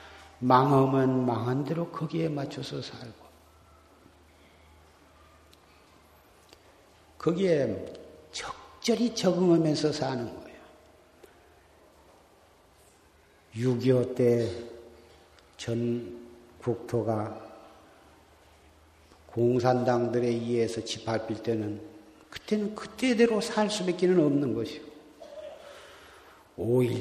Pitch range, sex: 115-165 Hz, male